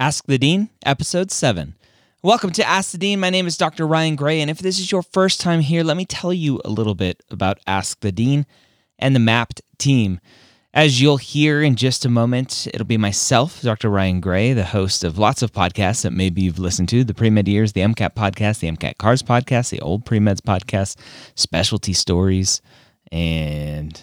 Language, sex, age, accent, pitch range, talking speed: English, male, 30-49, American, 90-125 Hz, 200 wpm